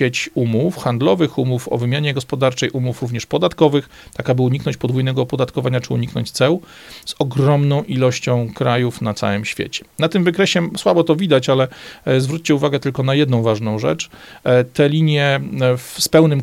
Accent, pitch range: native, 115-145 Hz